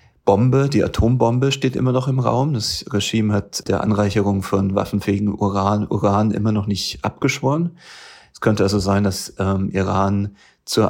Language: German